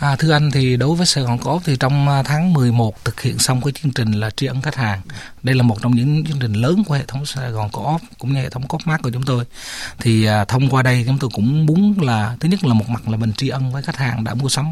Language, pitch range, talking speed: Vietnamese, 120-155 Hz, 285 wpm